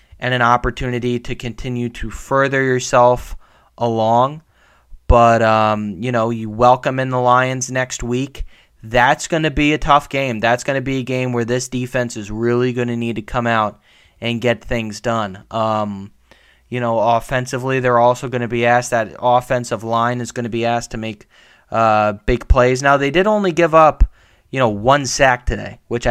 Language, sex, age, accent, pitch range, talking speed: English, male, 20-39, American, 110-130 Hz, 190 wpm